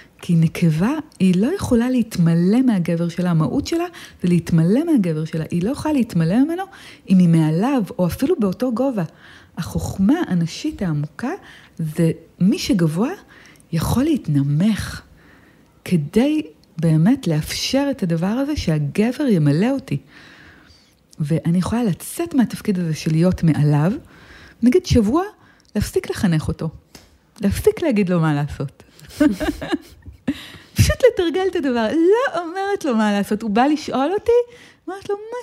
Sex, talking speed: female, 130 wpm